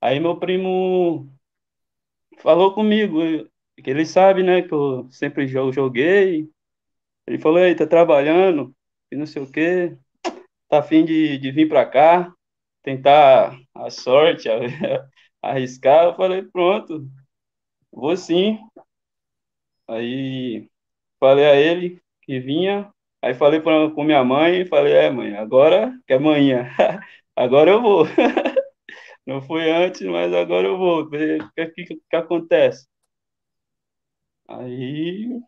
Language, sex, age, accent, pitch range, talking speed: Portuguese, male, 20-39, Brazilian, 135-185 Hz, 130 wpm